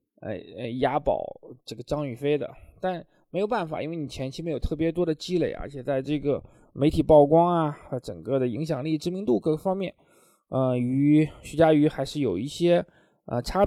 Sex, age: male, 20-39